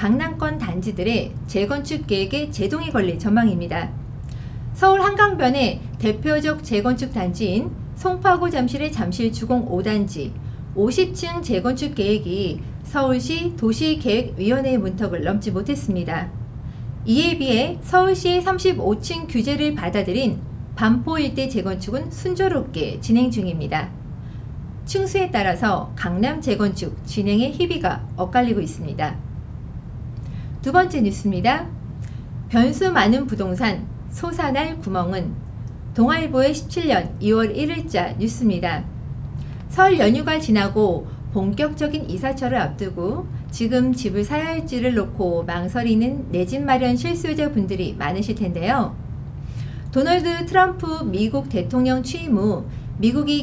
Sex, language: female, Korean